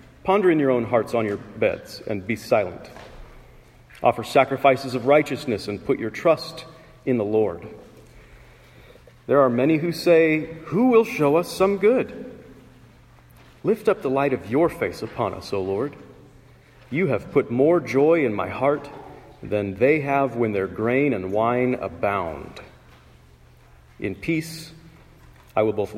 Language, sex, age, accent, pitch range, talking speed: English, male, 40-59, American, 110-160 Hz, 150 wpm